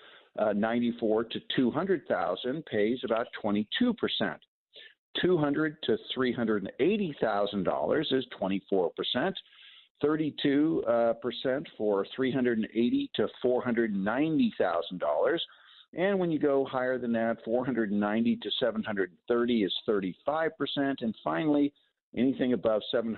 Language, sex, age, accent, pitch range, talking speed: English, male, 50-69, American, 110-145 Hz, 170 wpm